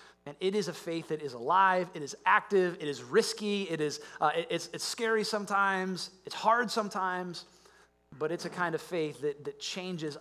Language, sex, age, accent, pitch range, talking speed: English, male, 30-49, American, 145-185 Hz, 200 wpm